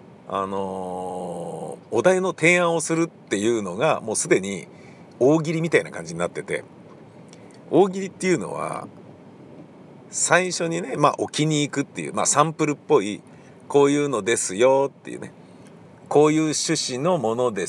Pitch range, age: 125-190 Hz, 50-69